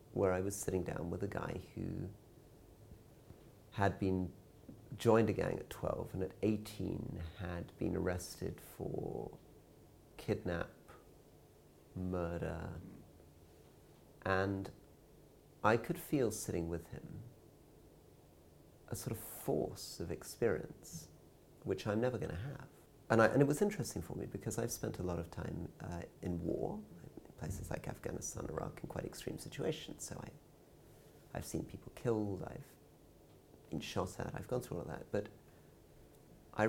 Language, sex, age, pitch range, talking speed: English, male, 40-59, 90-115 Hz, 140 wpm